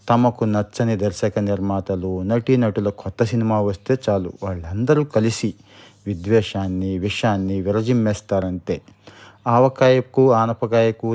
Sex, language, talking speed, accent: male, Telugu, 90 wpm, native